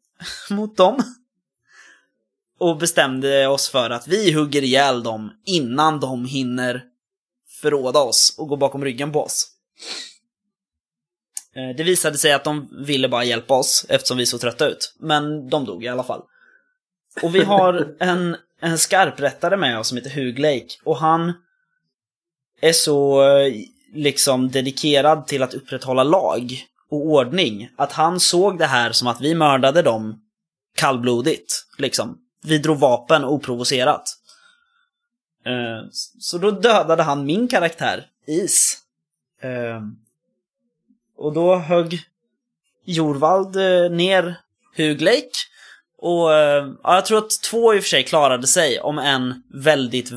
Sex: male